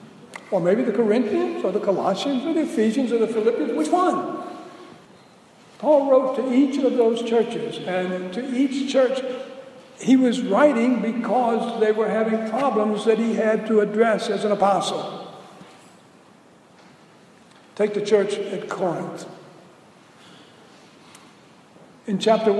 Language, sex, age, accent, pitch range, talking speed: English, male, 60-79, American, 190-250 Hz, 130 wpm